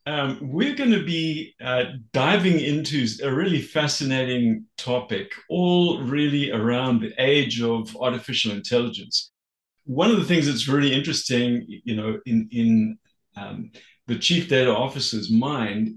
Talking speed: 140 wpm